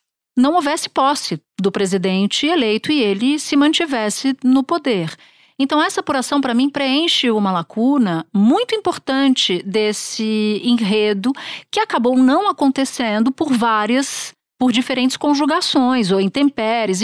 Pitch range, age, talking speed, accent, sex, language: 220-280 Hz, 50-69, 125 wpm, Brazilian, female, Portuguese